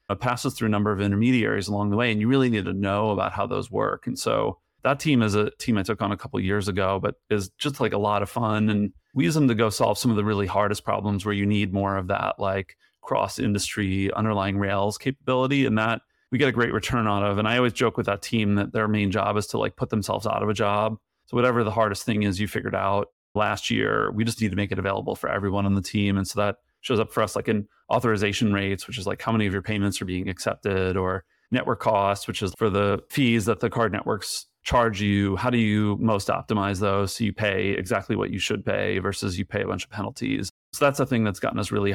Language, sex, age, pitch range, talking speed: English, male, 30-49, 100-115 Hz, 265 wpm